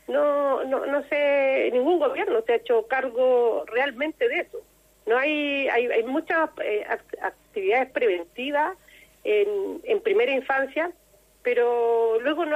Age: 40-59